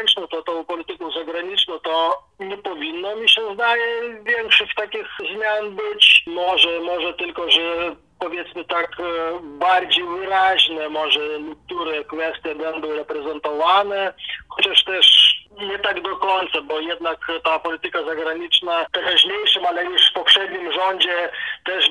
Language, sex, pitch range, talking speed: Polish, male, 165-200 Hz, 130 wpm